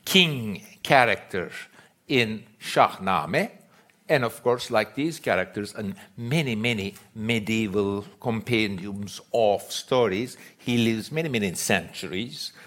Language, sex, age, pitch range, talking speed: English, male, 60-79, 110-140 Hz, 105 wpm